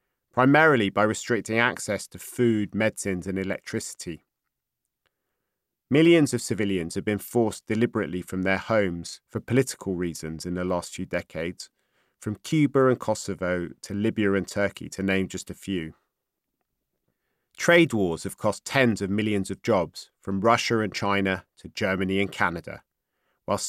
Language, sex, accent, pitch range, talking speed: English, male, British, 95-120 Hz, 145 wpm